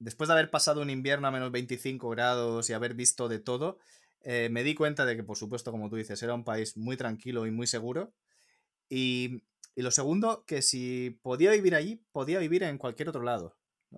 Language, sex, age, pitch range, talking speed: Spanish, male, 20-39, 115-150 Hz, 215 wpm